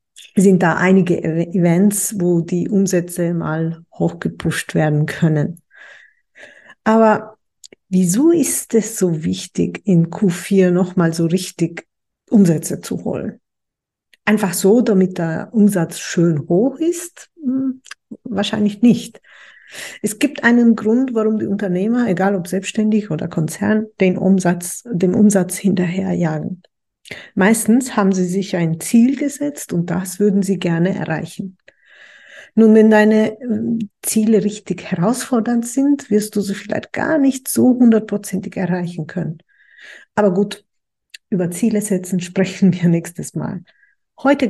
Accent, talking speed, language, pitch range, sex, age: German, 125 wpm, German, 180-220 Hz, female, 50-69